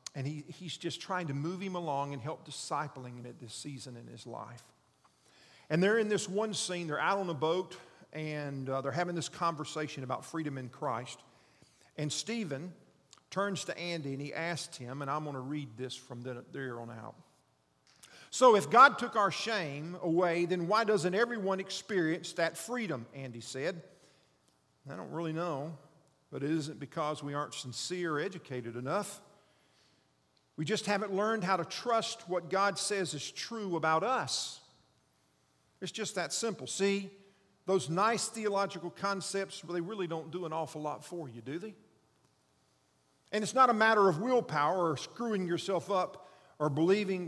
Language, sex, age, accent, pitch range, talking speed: English, male, 50-69, American, 140-195 Hz, 175 wpm